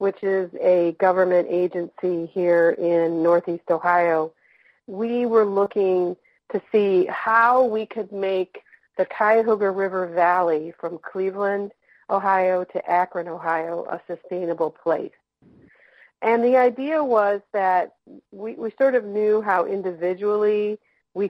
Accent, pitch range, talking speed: American, 170-200 Hz, 125 wpm